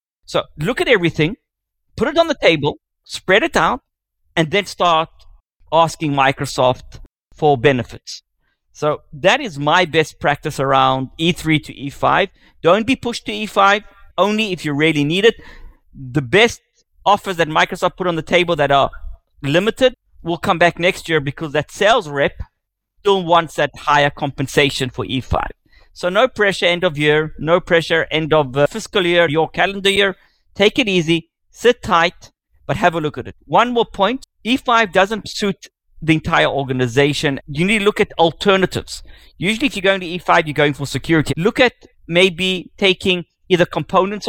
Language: English